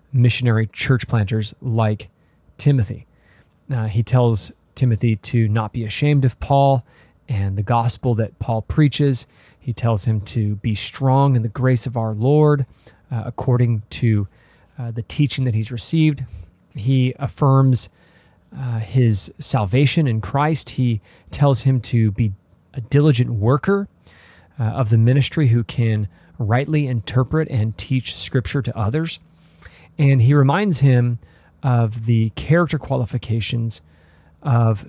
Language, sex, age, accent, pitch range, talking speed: English, male, 30-49, American, 110-135 Hz, 135 wpm